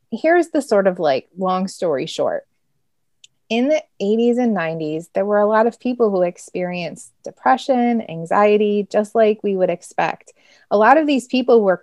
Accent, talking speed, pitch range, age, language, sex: American, 175 wpm, 185-245 Hz, 20-39, English, female